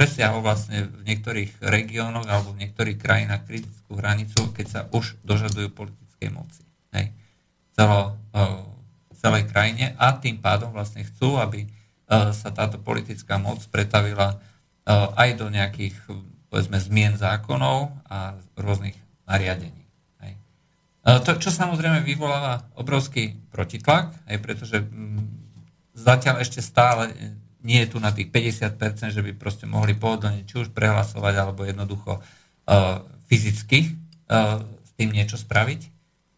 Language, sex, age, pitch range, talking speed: Slovak, male, 50-69, 105-120 Hz, 125 wpm